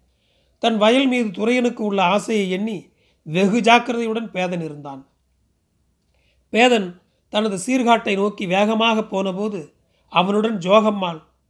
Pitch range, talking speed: 175-225 Hz, 100 wpm